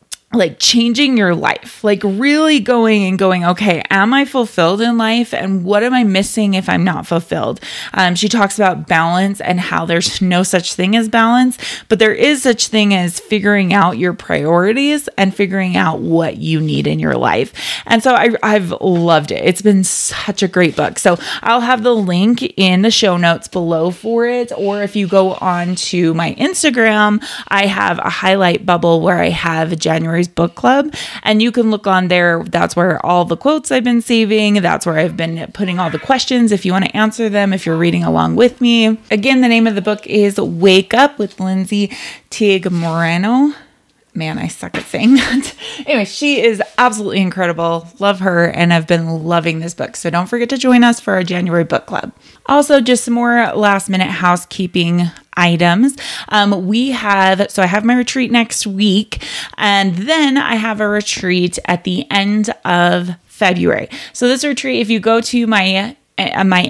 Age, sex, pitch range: 20-39, female, 180-230 Hz